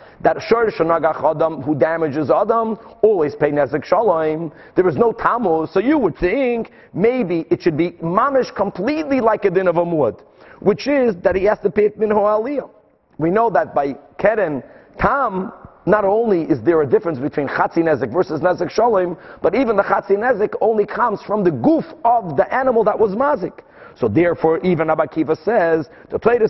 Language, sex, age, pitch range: English, male, 40-59, 165-225 Hz